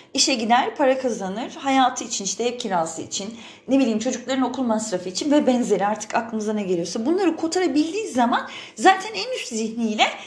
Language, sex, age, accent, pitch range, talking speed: Turkish, female, 30-49, native, 210-290 Hz, 170 wpm